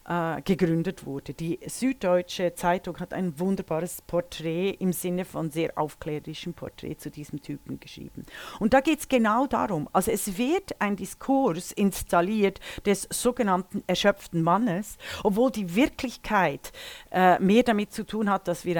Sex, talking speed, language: female, 145 wpm, German